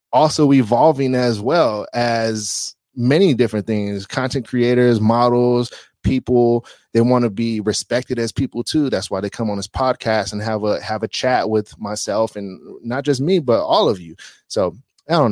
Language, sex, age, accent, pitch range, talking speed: English, male, 20-39, American, 110-135 Hz, 180 wpm